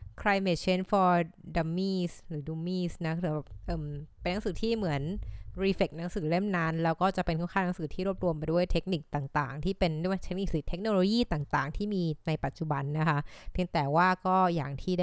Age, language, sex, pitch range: 20-39, Thai, female, 155-185 Hz